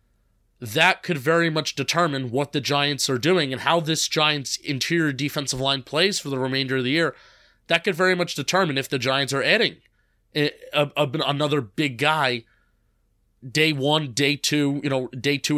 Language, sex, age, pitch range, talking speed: English, male, 30-49, 130-160 Hz, 180 wpm